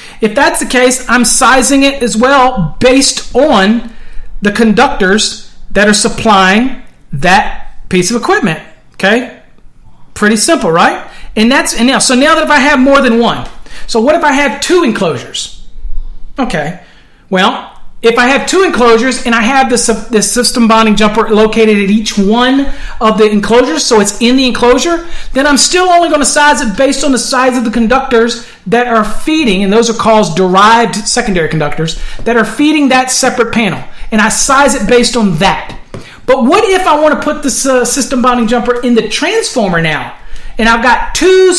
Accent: American